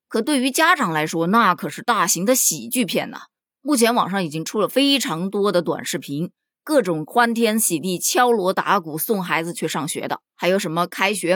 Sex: female